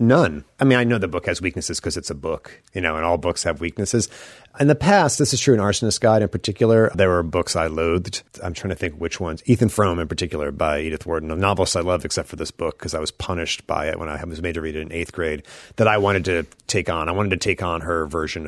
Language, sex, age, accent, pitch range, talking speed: English, male, 30-49, American, 85-115 Hz, 280 wpm